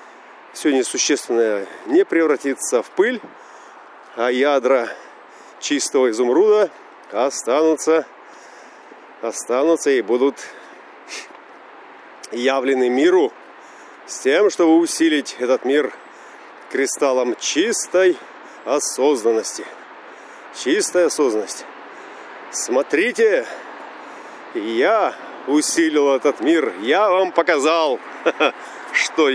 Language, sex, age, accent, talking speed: Russian, male, 40-59, native, 75 wpm